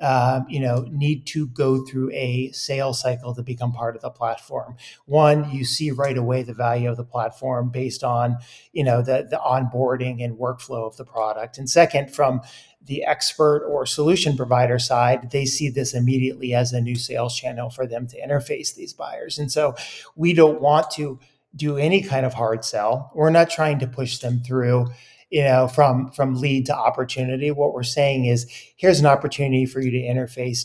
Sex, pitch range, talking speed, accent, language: male, 125-145 Hz, 195 wpm, American, English